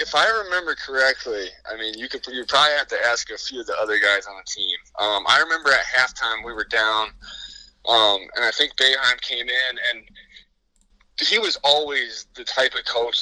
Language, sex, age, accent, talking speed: English, male, 20-39, American, 205 wpm